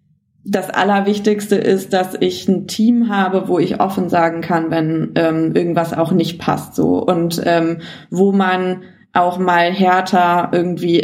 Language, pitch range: German, 170-195 Hz